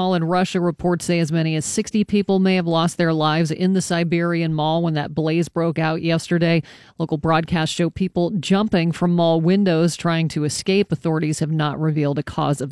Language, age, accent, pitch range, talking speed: English, 40-59, American, 160-200 Hz, 200 wpm